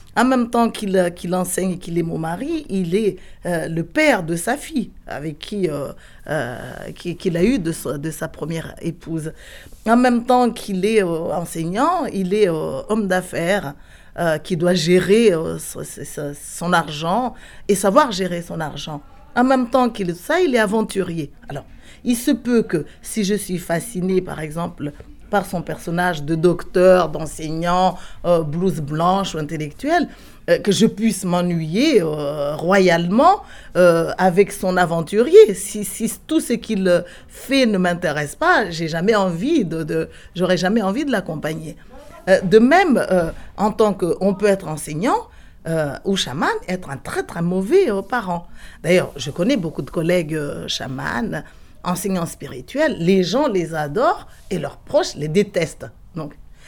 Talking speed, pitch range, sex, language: 165 wpm, 165-225 Hz, female, French